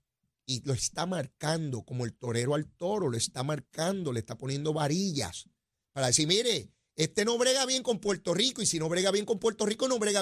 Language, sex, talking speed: Spanish, male, 210 wpm